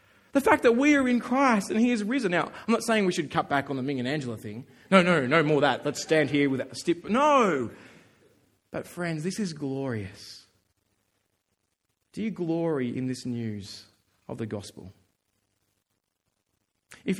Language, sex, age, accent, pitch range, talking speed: English, male, 30-49, Australian, 145-230 Hz, 180 wpm